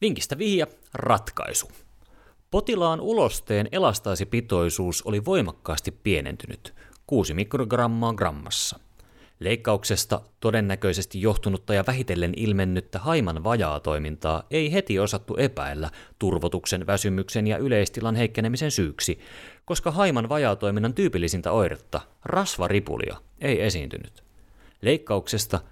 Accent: native